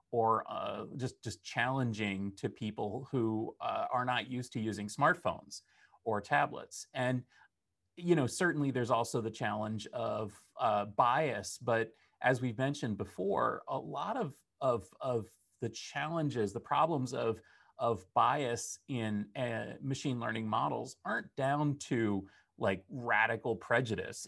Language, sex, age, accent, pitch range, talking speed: English, male, 30-49, American, 110-135 Hz, 140 wpm